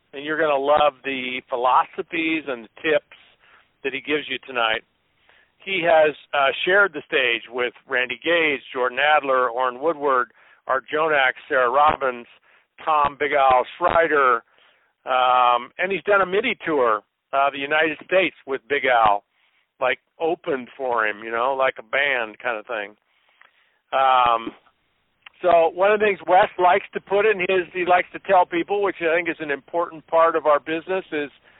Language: English